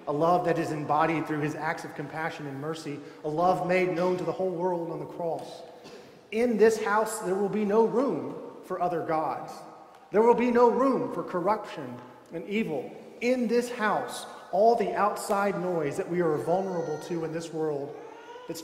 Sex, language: male, English